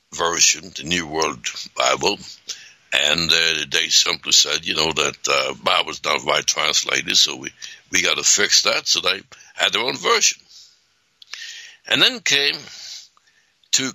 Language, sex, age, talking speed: English, male, 60-79, 160 wpm